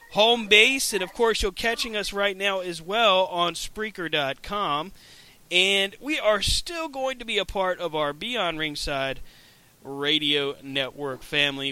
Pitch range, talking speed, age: 140-195 Hz, 155 wpm, 30-49